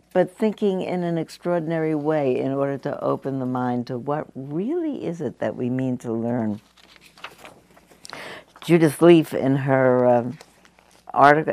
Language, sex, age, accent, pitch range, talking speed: English, female, 60-79, American, 120-150 Hz, 135 wpm